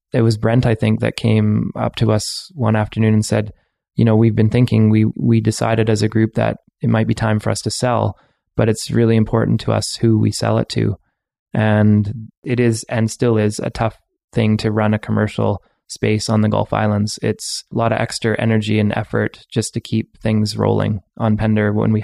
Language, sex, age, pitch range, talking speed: English, male, 20-39, 110-115 Hz, 220 wpm